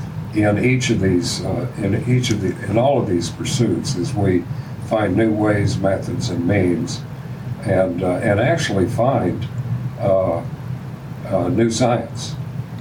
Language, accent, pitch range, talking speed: English, American, 105-135 Hz, 145 wpm